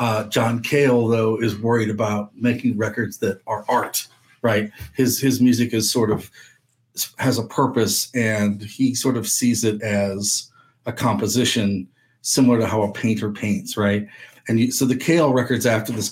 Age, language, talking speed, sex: 40-59, English, 170 wpm, male